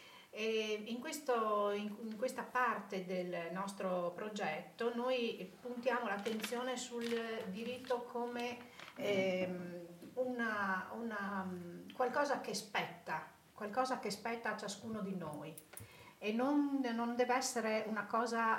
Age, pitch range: 40-59, 195-240 Hz